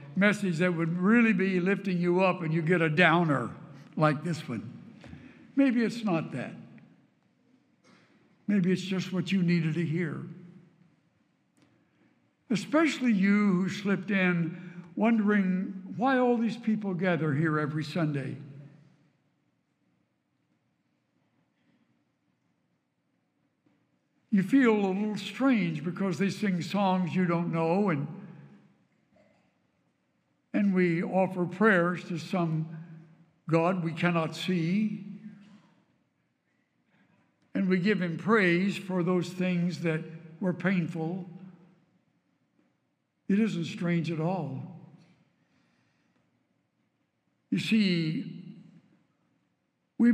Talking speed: 100 wpm